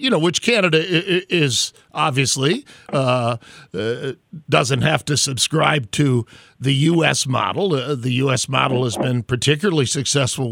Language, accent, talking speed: English, American, 130 wpm